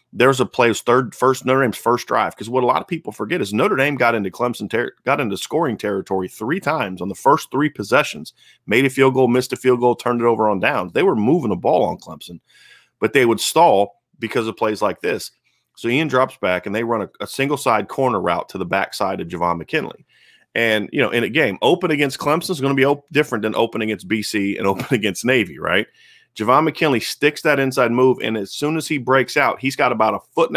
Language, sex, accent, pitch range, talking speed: English, male, American, 110-135 Hz, 245 wpm